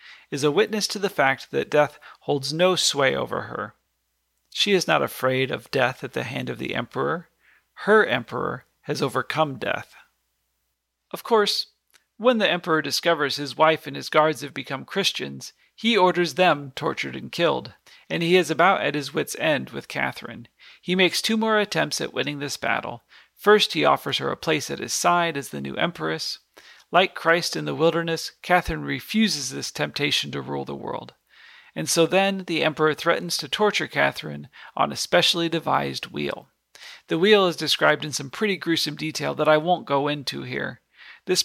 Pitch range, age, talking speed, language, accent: 135-185 Hz, 40-59, 180 wpm, English, American